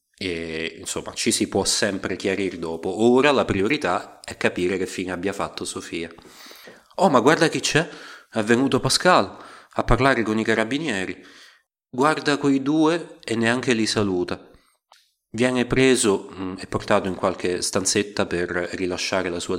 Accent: native